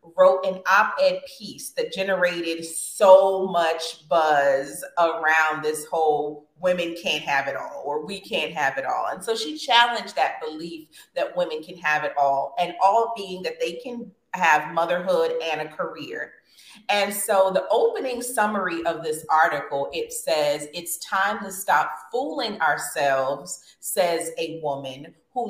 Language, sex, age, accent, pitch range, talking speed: English, female, 30-49, American, 165-235 Hz, 155 wpm